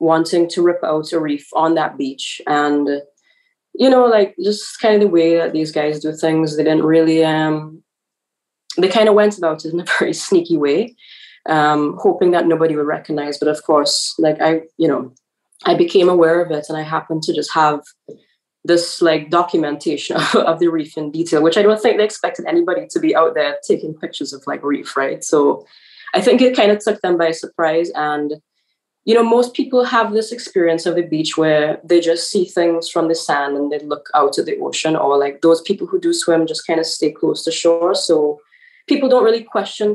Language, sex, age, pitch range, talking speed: English, female, 20-39, 155-200 Hz, 215 wpm